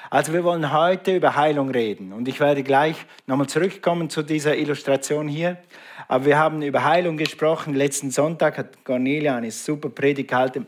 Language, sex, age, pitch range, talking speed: German, male, 50-69, 135-160 Hz, 170 wpm